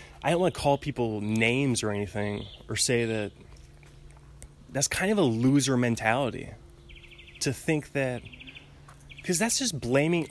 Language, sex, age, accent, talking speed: English, male, 20-39, American, 140 wpm